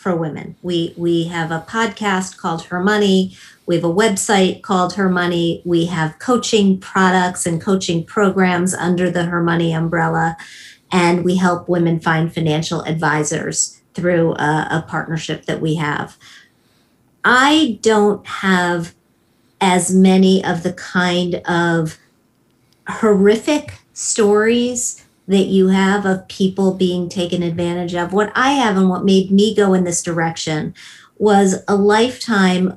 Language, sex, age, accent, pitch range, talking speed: English, female, 50-69, American, 170-200 Hz, 140 wpm